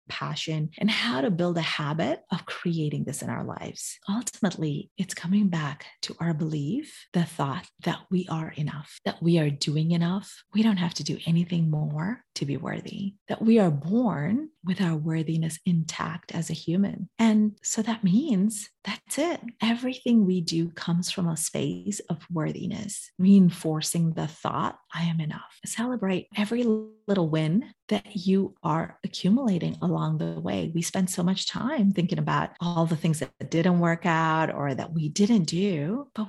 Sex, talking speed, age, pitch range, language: female, 170 wpm, 30-49, 165-215 Hz, English